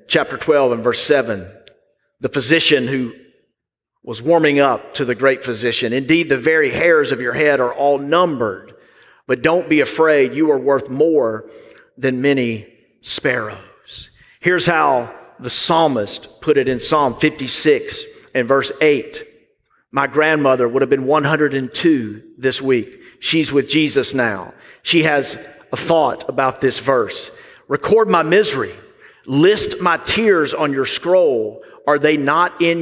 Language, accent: English, American